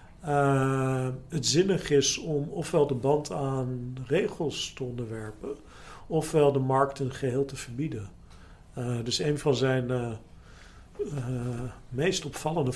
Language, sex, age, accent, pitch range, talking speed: Dutch, male, 50-69, Dutch, 125-145 Hz, 130 wpm